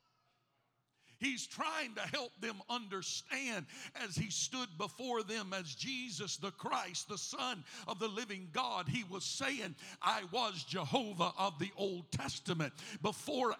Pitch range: 180-245 Hz